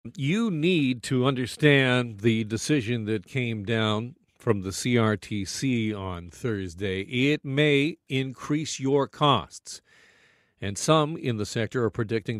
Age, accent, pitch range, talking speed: 50-69, American, 105-135 Hz, 125 wpm